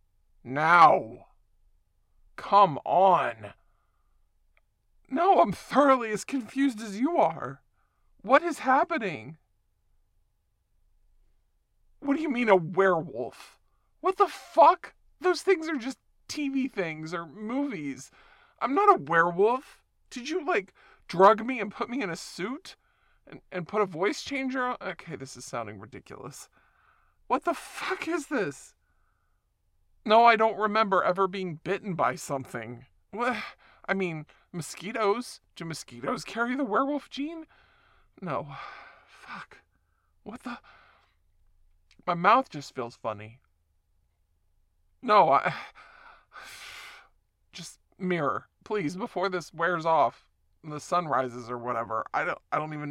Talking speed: 125 wpm